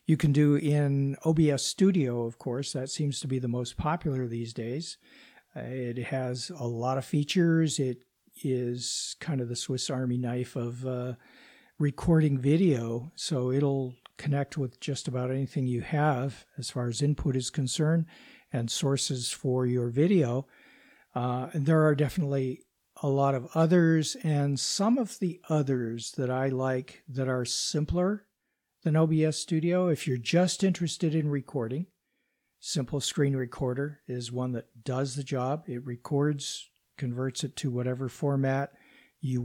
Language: English